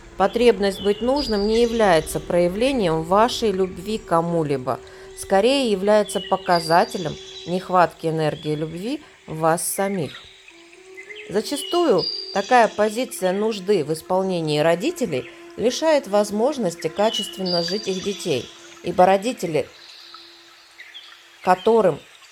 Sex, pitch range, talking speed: female, 170-250 Hz, 90 wpm